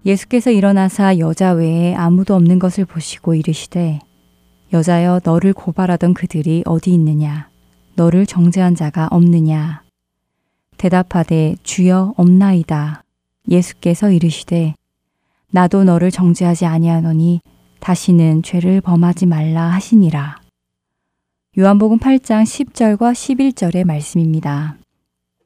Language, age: Korean, 20-39